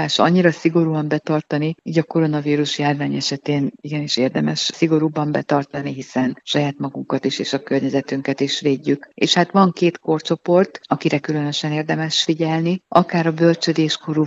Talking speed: 140 wpm